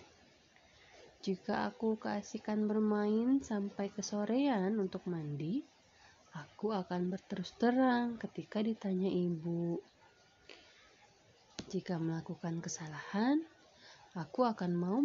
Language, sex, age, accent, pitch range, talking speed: Indonesian, female, 30-49, native, 165-215 Hz, 85 wpm